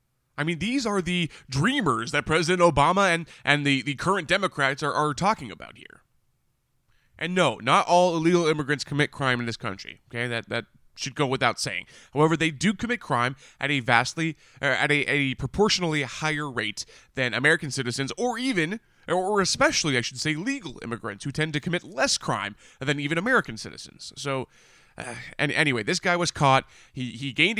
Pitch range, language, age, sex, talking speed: 125-170 Hz, English, 20-39, male, 185 wpm